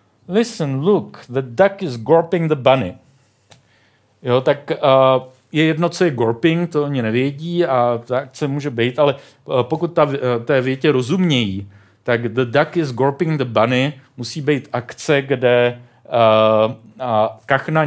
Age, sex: 40-59, male